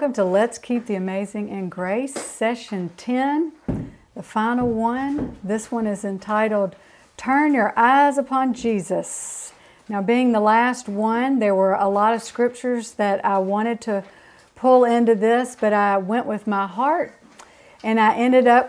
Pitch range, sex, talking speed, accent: 200-255 Hz, female, 160 wpm, American